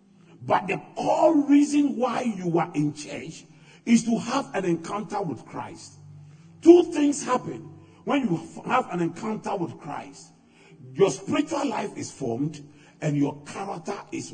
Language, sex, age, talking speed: English, male, 50-69, 145 wpm